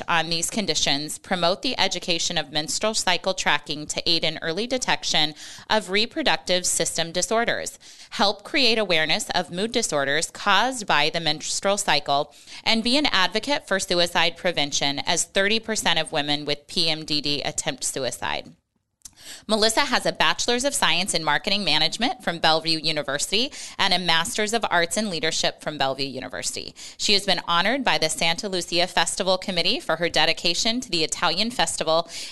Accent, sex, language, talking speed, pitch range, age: American, female, English, 155 wpm, 160-205 Hz, 20-39